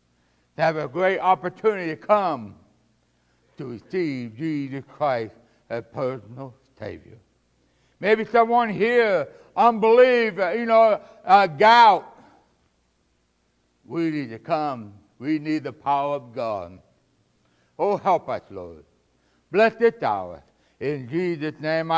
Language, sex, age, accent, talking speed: English, male, 60-79, American, 115 wpm